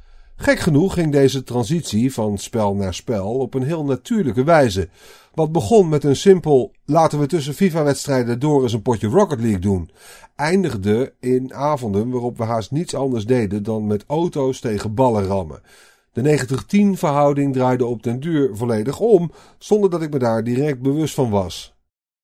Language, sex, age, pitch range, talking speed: Dutch, male, 40-59, 105-150 Hz, 175 wpm